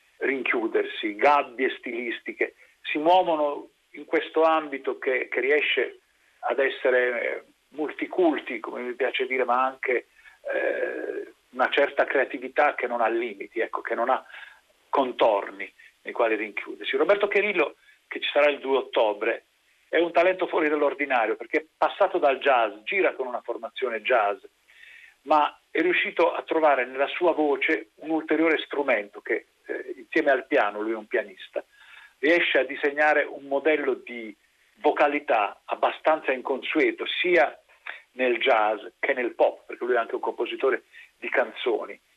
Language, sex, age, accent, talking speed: Italian, male, 50-69, native, 145 wpm